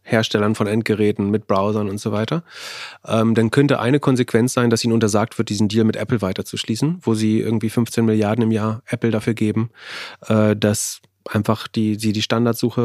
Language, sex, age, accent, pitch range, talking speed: German, male, 30-49, German, 110-120 Hz, 180 wpm